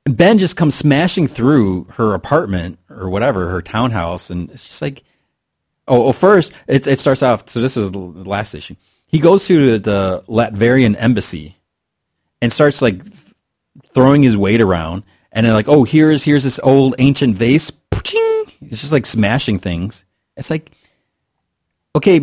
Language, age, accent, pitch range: English, 30-49, American, 95-135 Hz